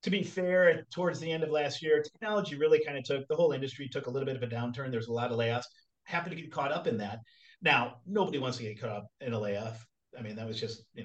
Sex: male